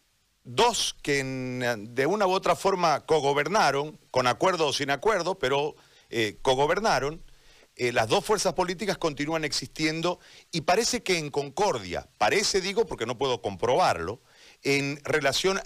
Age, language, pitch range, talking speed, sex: 40-59, Spanish, 130-175 Hz, 135 wpm, male